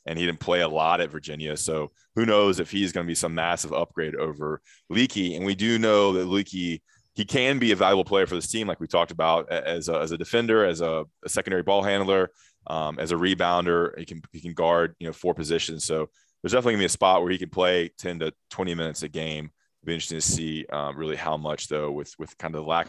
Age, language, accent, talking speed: 20-39, English, American, 255 wpm